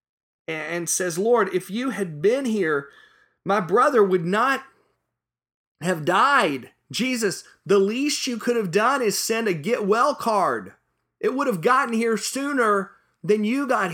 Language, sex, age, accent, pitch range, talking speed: English, male, 40-59, American, 145-215 Hz, 155 wpm